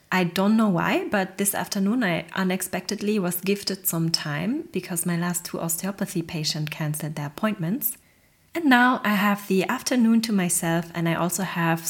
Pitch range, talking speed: 165-205 Hz, 170 wpm